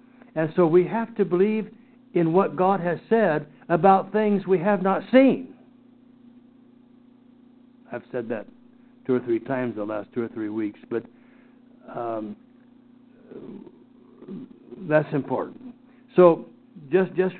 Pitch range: 150-245 Hz